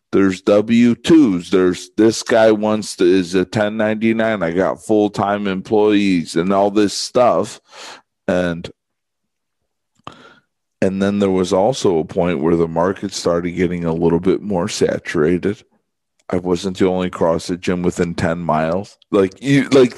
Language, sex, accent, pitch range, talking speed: English, male, American, 90-110 Hz, 150 wpm